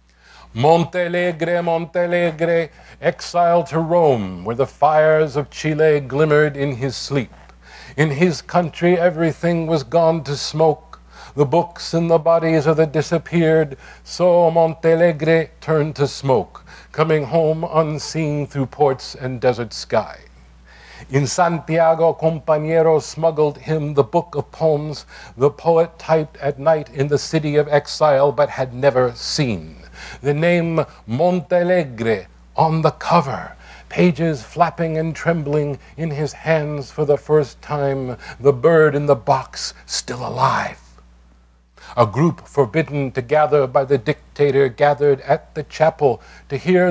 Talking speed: 135 wpm